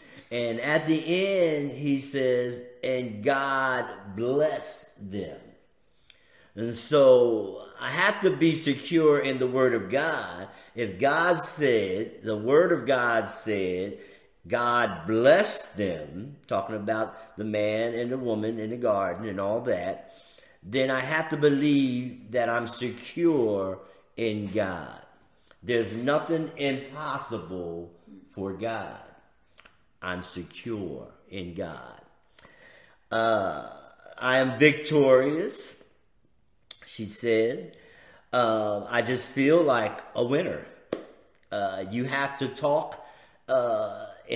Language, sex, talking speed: English, male, 115 wpm